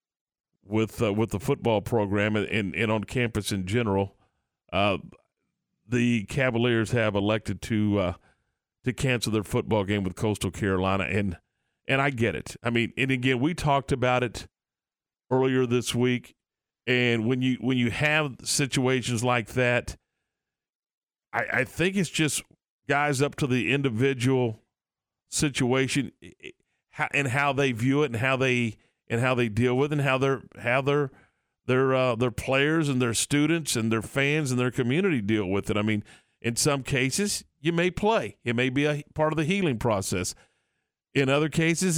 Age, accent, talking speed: 40-59, American, 170 wpm